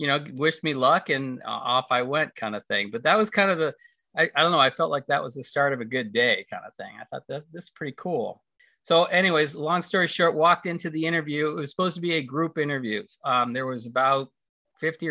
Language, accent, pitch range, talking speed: English, American, 140-175 Hz, 260 wpm